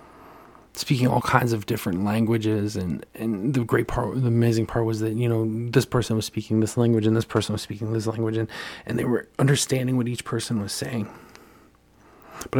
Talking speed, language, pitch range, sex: 200 wpm, English, 105-120 Hz, male